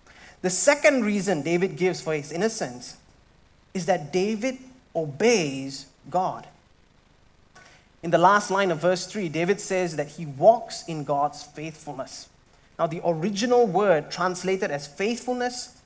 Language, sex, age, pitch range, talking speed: English, male, 30-49, 155-215 Hz, 130 wpm